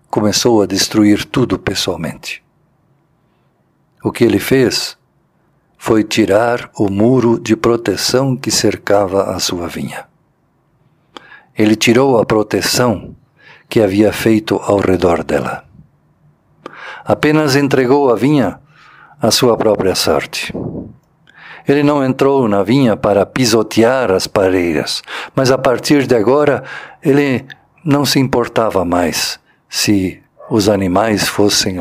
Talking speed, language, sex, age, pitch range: 115 wpm, Portuguese, male, 50-69, 100-130 Hz